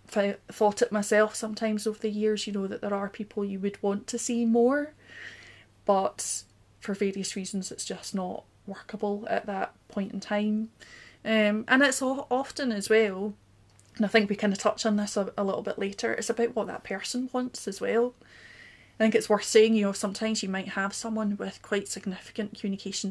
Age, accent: 20-39, British